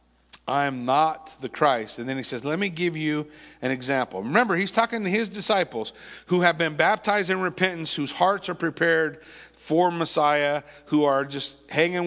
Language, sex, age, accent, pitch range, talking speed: English, male, 50-69, American, 150-185 Hz, 185 wpm